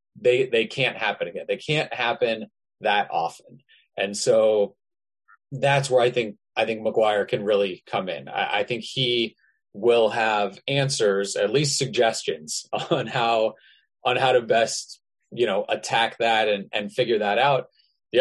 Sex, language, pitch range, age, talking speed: male, English, 110-150 Hz, 30-49, 160 wpm